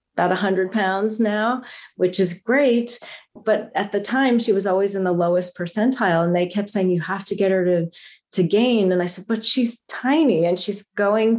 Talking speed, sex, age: 205 wpm, female, 30-49